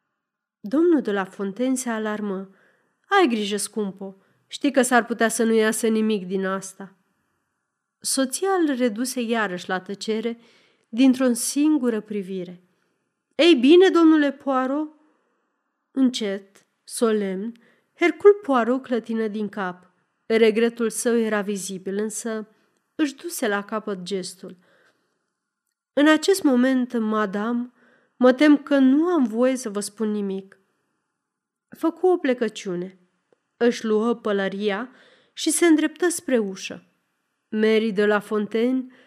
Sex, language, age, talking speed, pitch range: female, Romanian, 30-49, 120 wpm, 200-265 Hz